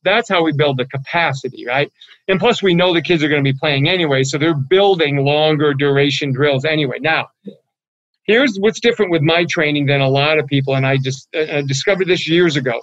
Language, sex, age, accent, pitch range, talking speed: English, male, 50-69, American, 140-175 Hz, 210 wpm